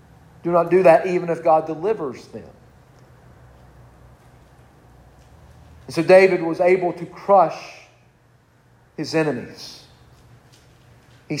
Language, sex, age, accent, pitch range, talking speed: English, male, 40-59, American, 155-195 Hz, 100 wpm